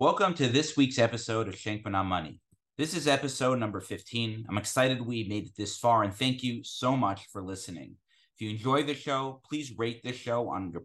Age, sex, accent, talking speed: 30-49, male, American, 215 wpm